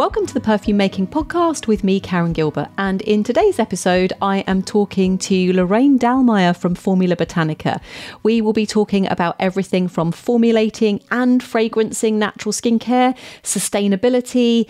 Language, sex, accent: English, female, British